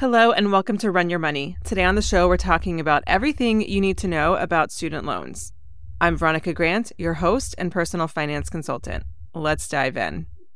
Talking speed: 195 wpm